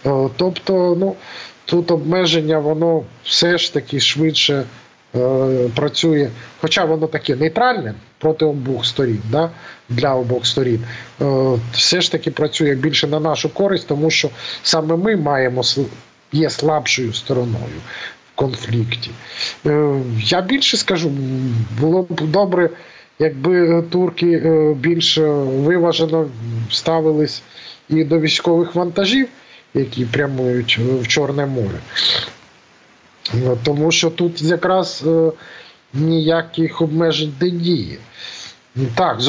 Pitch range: 125-165 Hz